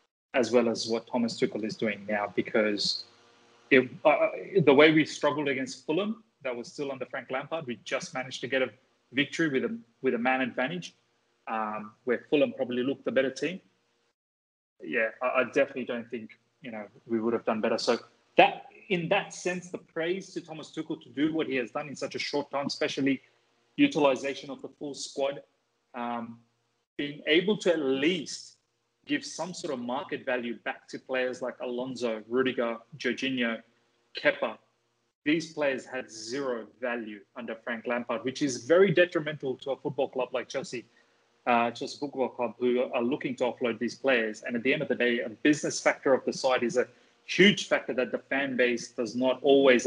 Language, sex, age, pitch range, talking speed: English, male, 30-49, 120-140 Hz, 190 wpm